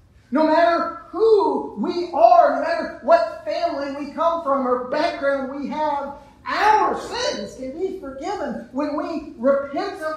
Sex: male